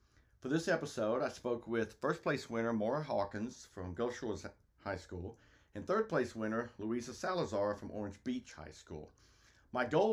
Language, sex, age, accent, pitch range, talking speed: English, male, 50-69, American, 100-125 Hz, 170 wpm